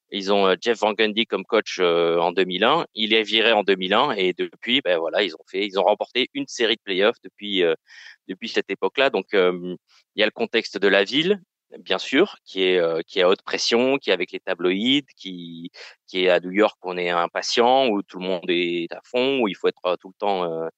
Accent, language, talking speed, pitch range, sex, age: French, French, 230 wpm, 95-135 Hz, male, 30-49